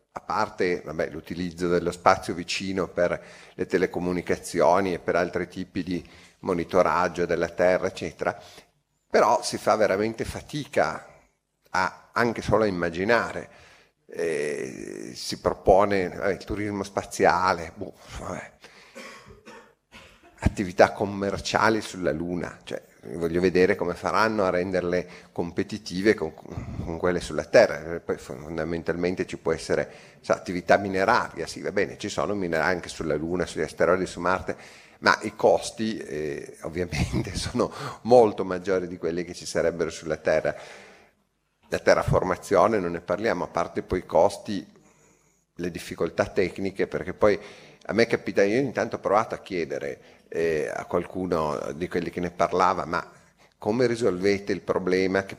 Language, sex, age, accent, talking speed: Italian, male, 40-59, native, 140 wpm